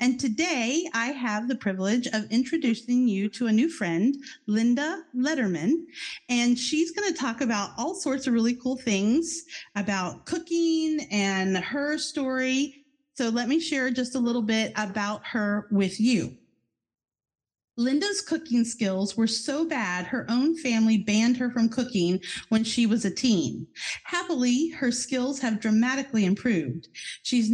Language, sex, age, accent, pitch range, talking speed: English, female, 40-59, American, 215-285 Hz, 150 wpm